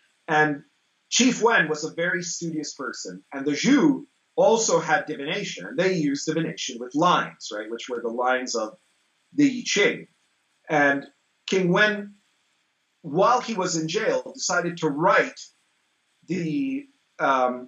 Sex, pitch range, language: male, 145-195 Hz, English